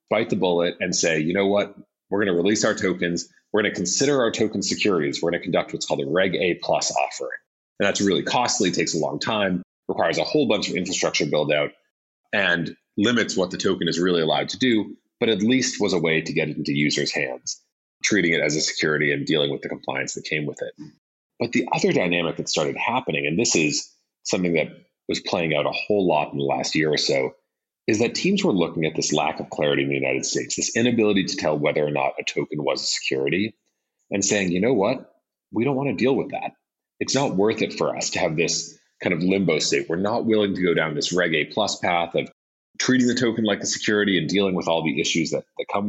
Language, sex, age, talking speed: English, male, 30-49, 240 wpm